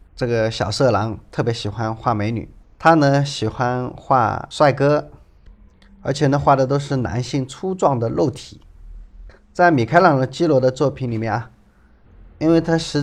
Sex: male